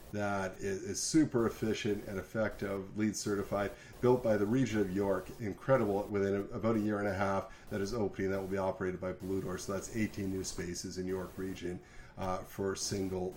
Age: 40-59